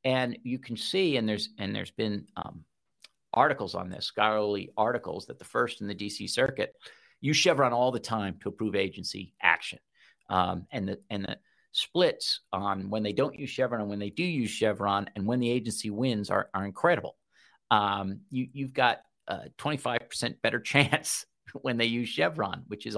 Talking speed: 185 wpm